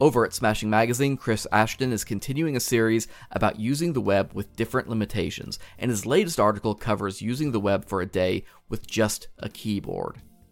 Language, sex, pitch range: English, male, 100-125 Hz